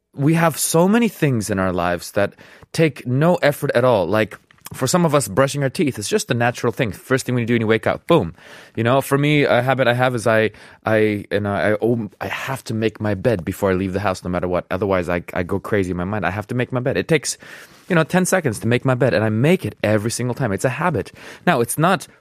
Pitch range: 100-140 Hz